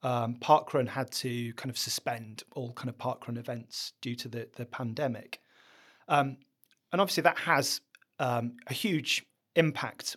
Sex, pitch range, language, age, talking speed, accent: male, 120-150 Hz, English, 30-49, 155 wpm, British